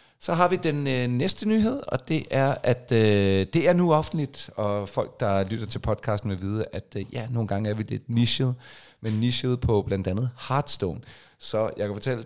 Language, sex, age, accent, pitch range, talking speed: Danish, male, 30-49, native, 100-130 Hz, 210 wpm